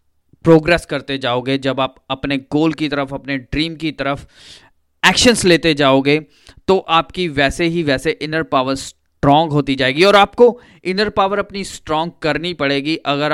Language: Hindi